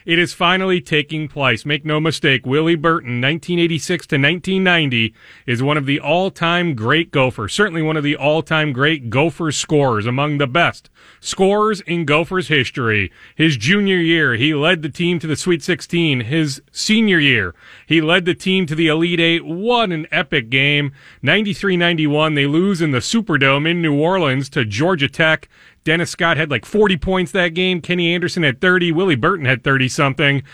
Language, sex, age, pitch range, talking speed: English, male, 30-49, 140-185 Hz, 175 wpm